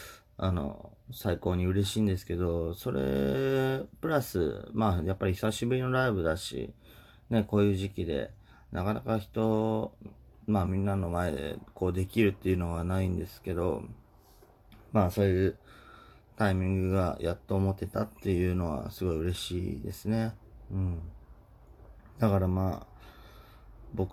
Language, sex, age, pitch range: Japanese, male, 30-49, 90-110 Hz